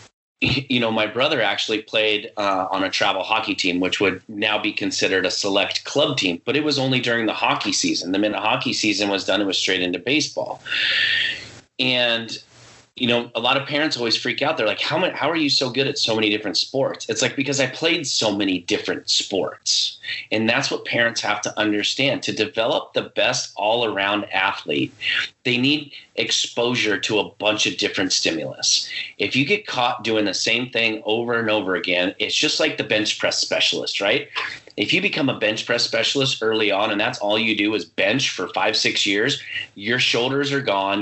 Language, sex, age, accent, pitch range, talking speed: English, male, 30-49, American, 105-135 Hz, 205 wpm